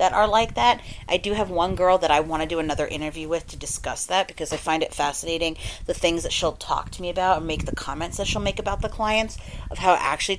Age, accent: 30-49, American